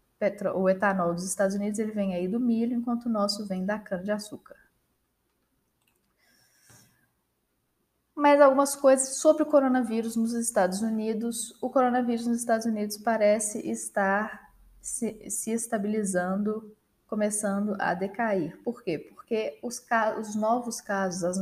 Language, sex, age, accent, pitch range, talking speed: Portuguese, female, 10-29, Brazilian, 190-235 Hz, 135 wpm